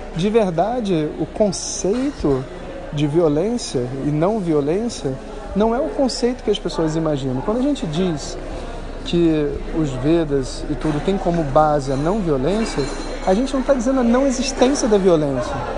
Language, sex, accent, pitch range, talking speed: Portuguese, male, Brazilian, 155-220 Hz, 160 wpm